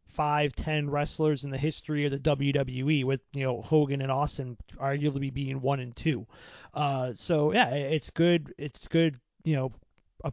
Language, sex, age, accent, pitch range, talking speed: English, male, 30-49, American, 140-165 Hz, 175 wpm